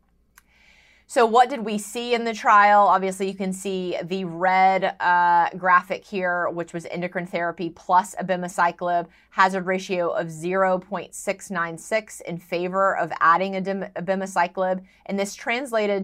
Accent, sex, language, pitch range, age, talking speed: American, female, English, 175-195 Hz, 30-49, 135 wpm